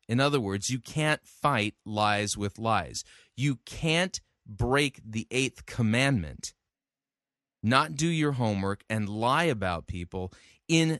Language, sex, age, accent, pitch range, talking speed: English, male, 30-49, American, 105-140 Hz, 130 wpm